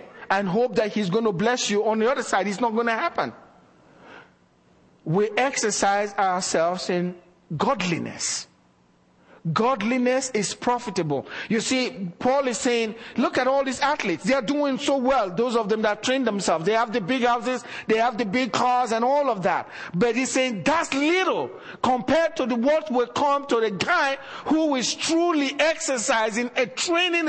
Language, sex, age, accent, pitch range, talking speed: English, male, 50-69, Nigerian, 185-255 Hz, 170 wpm